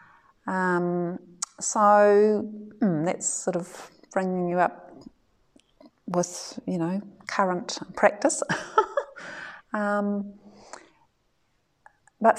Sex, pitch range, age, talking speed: female, 175-205 Hz, 30-49, 75 wpm